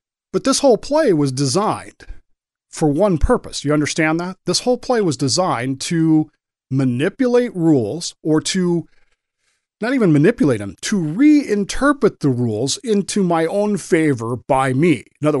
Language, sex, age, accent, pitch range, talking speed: English, male, 40-59, American, 125-175 Hz, 150 wpm